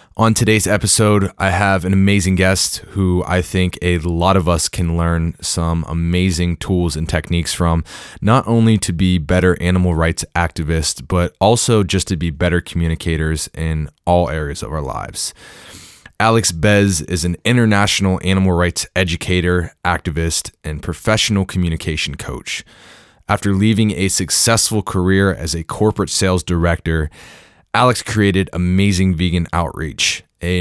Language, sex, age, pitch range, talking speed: English, male, 20-39, 85-100 Hz, 145 wpm